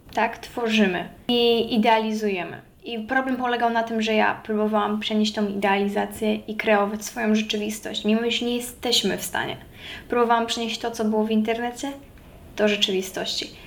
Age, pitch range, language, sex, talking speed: 10-29, 210-230 Hz, Polish, female, 150 wpm